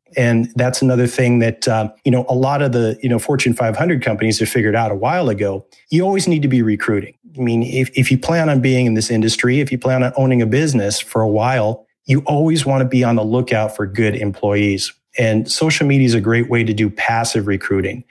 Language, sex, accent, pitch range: English, male, American, 110-135 Hz